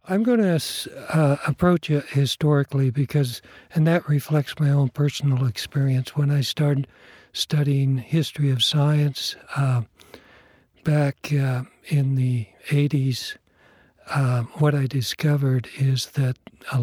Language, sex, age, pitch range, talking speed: English, male, 60-79, 130-150 Hz, 125 wpm